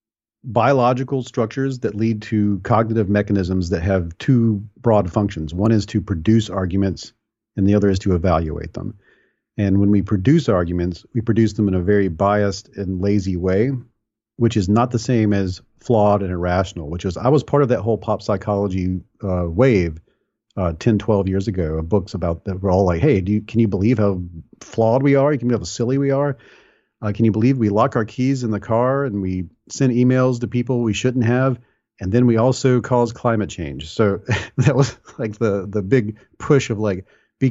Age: 40-59